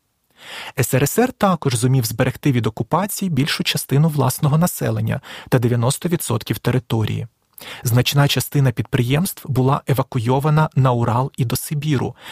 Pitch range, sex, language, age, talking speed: 120-155 Hz, male, Ukrainian, 20-39, 110 wpm